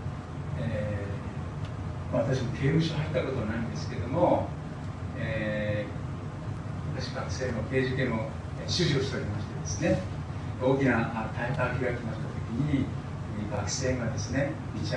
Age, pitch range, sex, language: 40-59, 120-140 Hz, male, Japanese